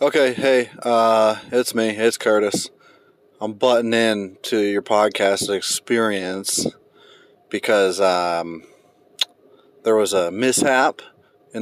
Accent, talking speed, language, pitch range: American, 110 wpm, English, 95-125 Hz